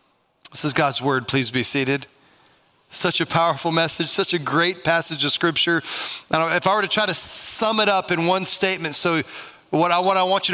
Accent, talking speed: American, 200 wpm